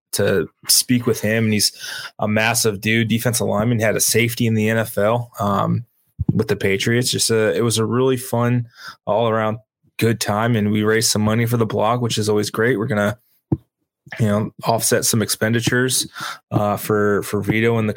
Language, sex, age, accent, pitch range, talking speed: English, male, 20-39, American, 105-120 Hz, 195 wpm